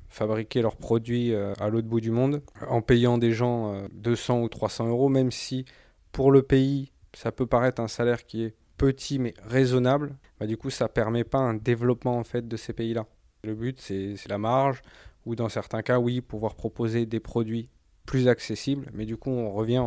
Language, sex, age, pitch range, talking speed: French, male, 20-39, 110-125 Hz, 200 wpm